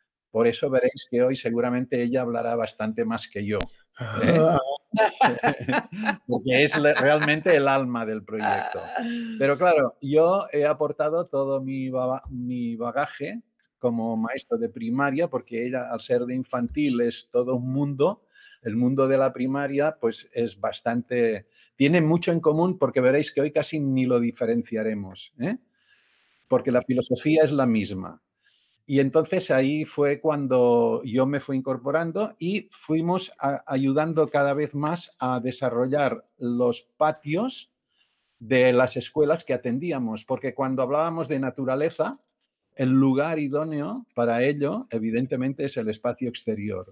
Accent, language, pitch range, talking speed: Spanish, Spanish, 125-155 Hz, 140 wpm